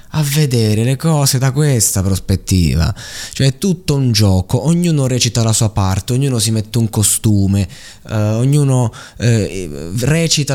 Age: 20-39